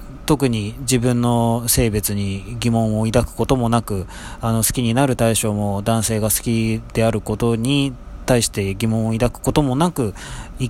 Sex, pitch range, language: male, 105-140 Hz, Japanese